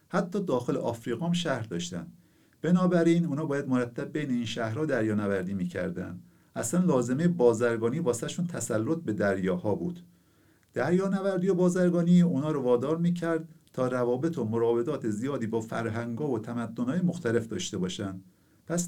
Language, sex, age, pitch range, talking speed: Persian, male, 50-69, 110-165 Hz, 145 wpm